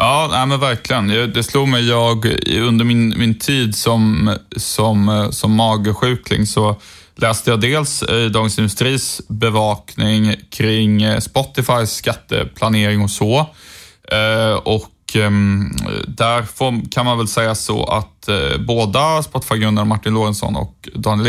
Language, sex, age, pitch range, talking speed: Swedish, male, 20-39, 110-120 Hz, 125 wpm